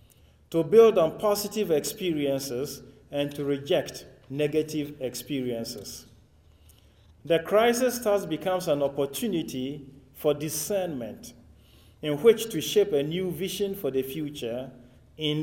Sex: male